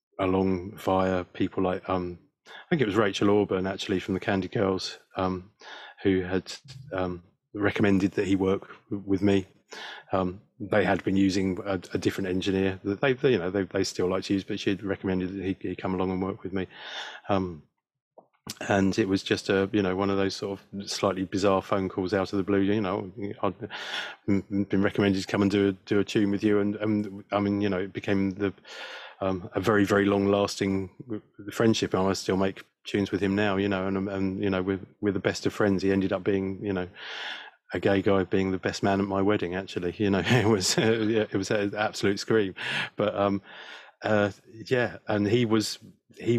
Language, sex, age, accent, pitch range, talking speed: English, male, 30-49, British, 95-100 Hz, 215 wpm